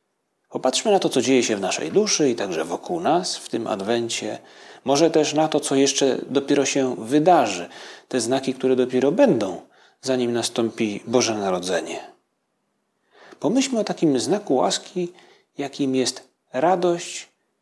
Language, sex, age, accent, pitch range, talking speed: Polish, male, 40-59, native, 120-160 Hz, 145 wpm